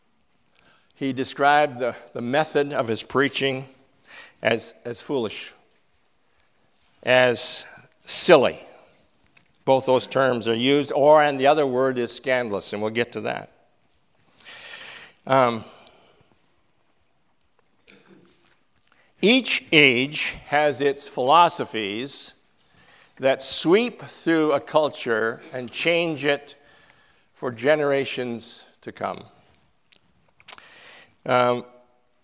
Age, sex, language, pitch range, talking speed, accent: 60-79, male, English, 130-160 Hz, 90 wpm, American